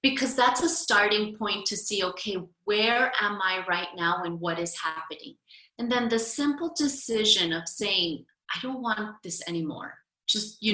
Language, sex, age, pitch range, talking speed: English, female, 30-49, 190-245 Hz, 175 wpm